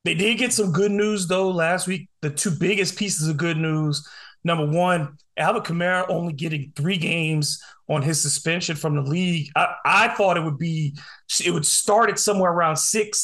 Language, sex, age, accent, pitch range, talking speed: English, male, 30-49, American, 160-200 Hz, 195 wpm